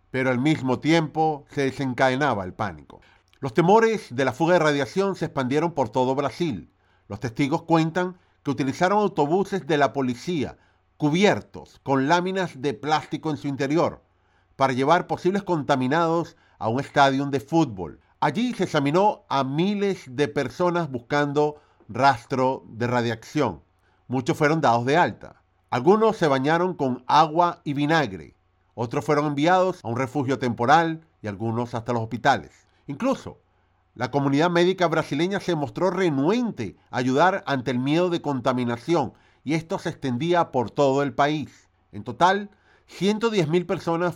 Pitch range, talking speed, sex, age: 125-170 Hz, 145 wpm, male, 50-69